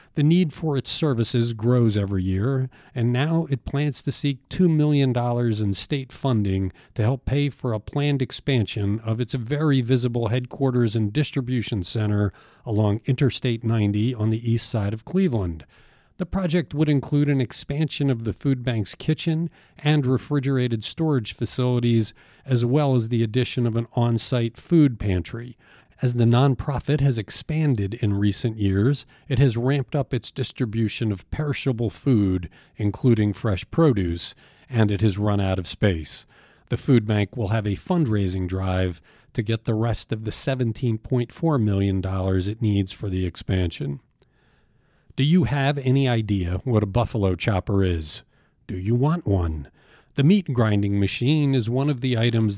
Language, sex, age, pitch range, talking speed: English, male, 50-69, 105-135 Hz, 160 wpm